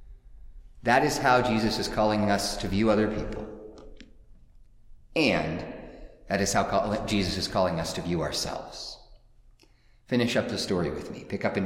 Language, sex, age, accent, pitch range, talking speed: English, male, 30-49, American, 100-125 Hz, 160 wpm